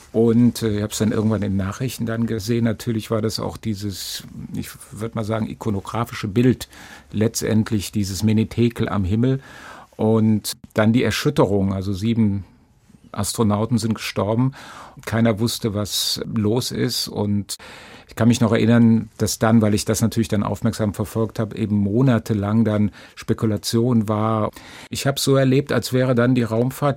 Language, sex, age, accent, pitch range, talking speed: German, male, 50-69, German, 110-125 Hz, 155 wpm